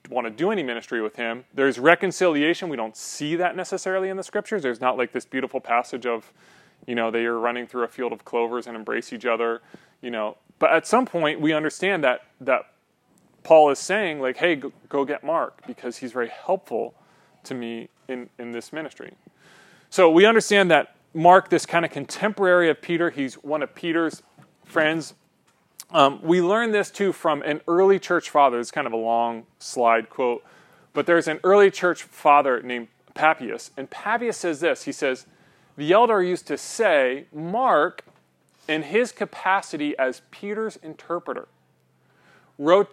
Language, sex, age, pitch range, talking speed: English, male, 30-49, 130-185 Hz, 180 wpm